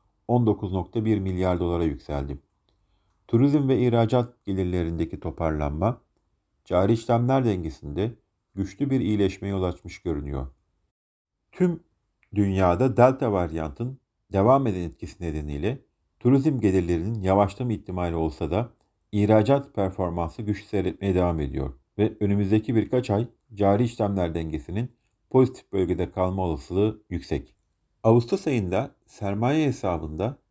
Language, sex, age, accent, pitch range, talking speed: Turkish, male, 50-69, native, 90-120 Hz, 105 wpm